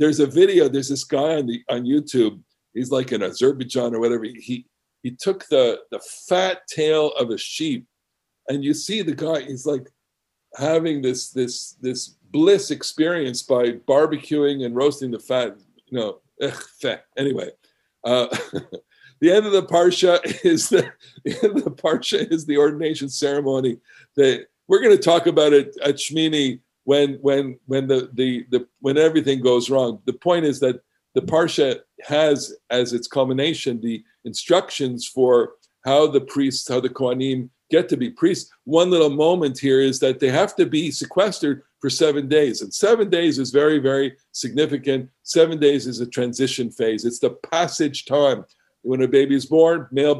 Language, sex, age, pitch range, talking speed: English, male, 50-69, 130-165 Hz, 175 wpm